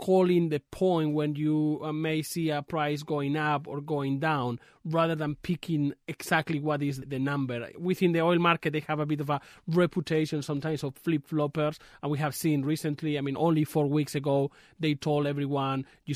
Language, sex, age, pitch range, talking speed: English, male, 30-49, 140-160 Hz, 195 wpm